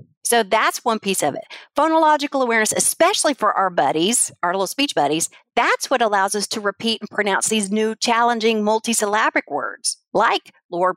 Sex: female